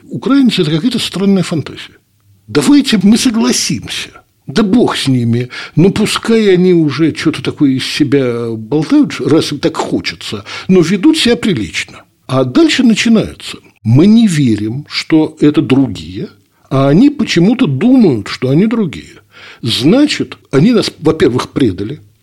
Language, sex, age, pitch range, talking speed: Russian, male, 60-79, 125-195 Hz, 135 wpm